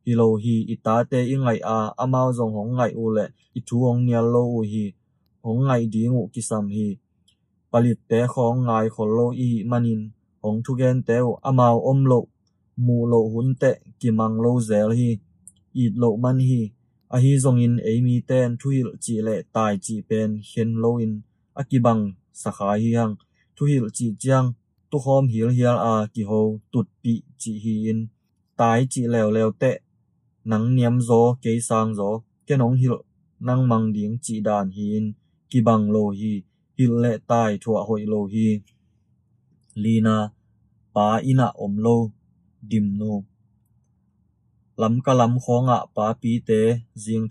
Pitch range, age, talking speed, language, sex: 110-120 Hz, 20-39, 45 wpm, English, male